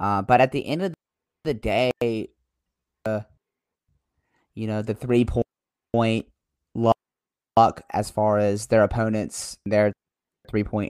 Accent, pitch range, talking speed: American, 105-120 Hz, 125 wpm